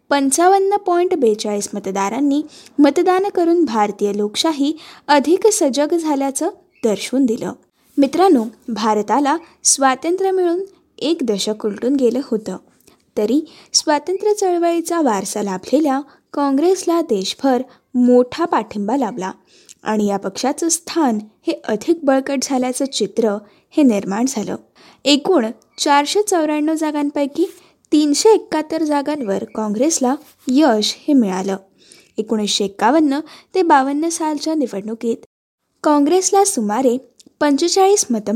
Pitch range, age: 230-335 Hz, 10-29